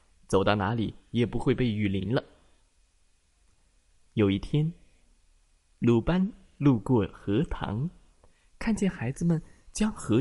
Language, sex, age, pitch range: Chinese, male, 20-39, 95-150 Hz